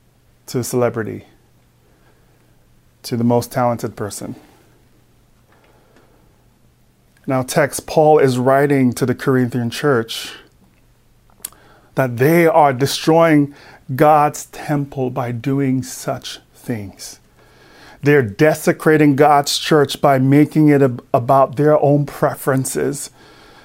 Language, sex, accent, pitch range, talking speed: English, male, American, 125-155 Hz, 95 wpm